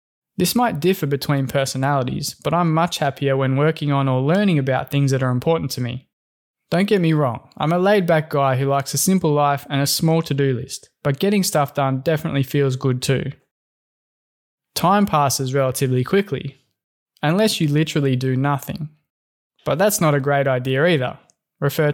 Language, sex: English, male